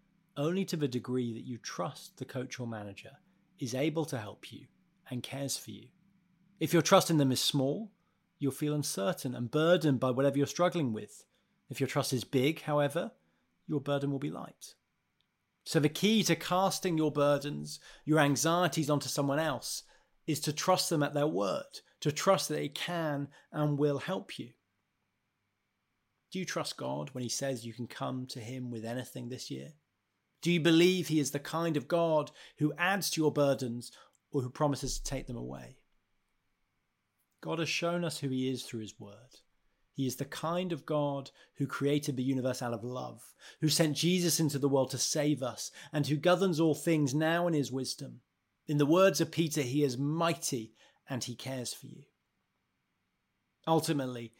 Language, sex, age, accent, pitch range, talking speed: English, male, 30-49, British, 125-160 Hz, 185 wpm